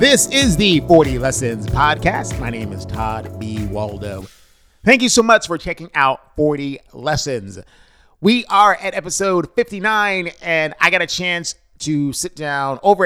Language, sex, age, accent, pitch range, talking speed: English, male, 30-49, American, 110-165 Hz, 160 wpm